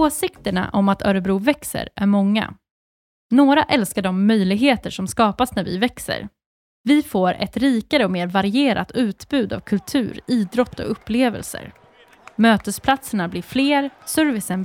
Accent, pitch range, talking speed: native, 200-275 Hz, 135 wpm